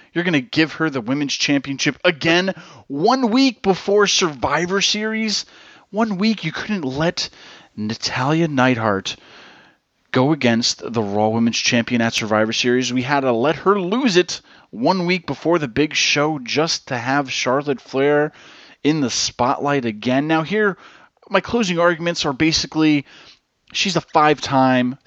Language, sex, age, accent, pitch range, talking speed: English, male, 30-49, American, 125-170 Hz, 150 wpm